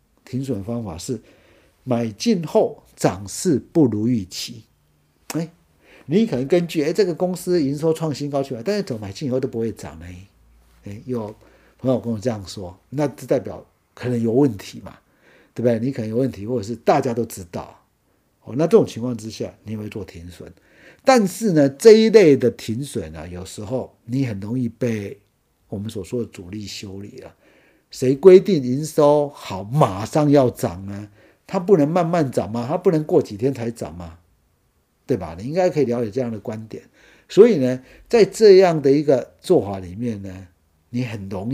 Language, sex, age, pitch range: Chinese, male, 50-69, 100-140 Hz